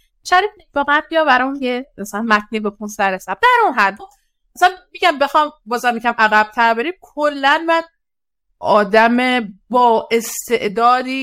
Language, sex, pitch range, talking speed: Persian, female, 210-275 Hz, 145 wpm